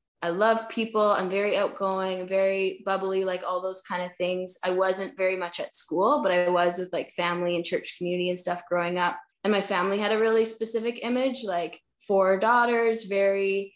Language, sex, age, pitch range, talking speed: English, female, 10-29, 180-210 Hz, 195 wpm